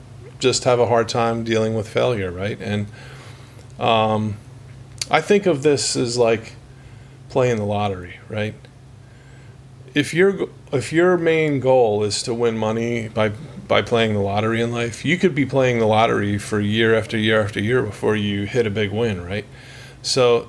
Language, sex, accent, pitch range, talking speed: English, male, American, 110-130 Hz, 170 wpm